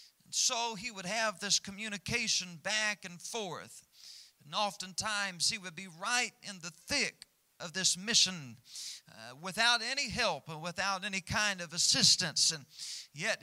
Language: English